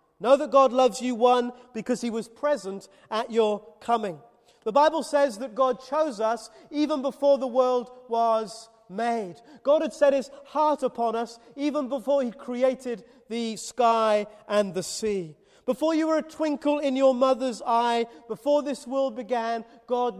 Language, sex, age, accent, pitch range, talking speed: English, male, 40-59, British, 220-280 Hz, 165 wpm